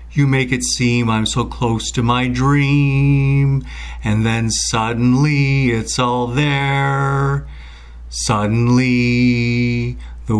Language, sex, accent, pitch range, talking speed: English, male, American, 105-135 Hz, 105 wpm